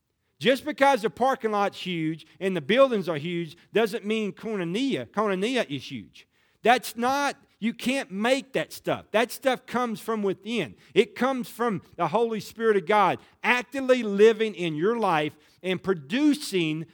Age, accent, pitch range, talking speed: 40-59, American, 155-225 Hz, 155 wpm